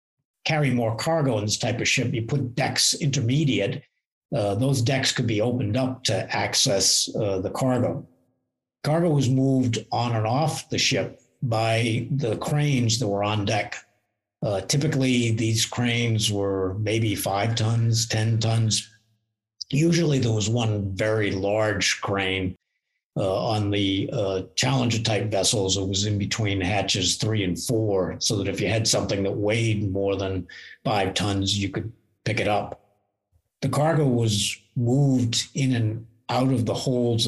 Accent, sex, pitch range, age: American, male, 105-125 Hz, 60-79